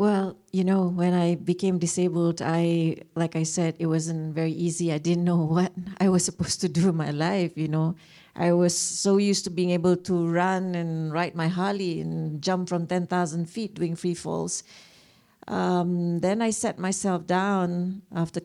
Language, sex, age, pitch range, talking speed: English, female, 40-59, 175-200 Hz, 190 wpm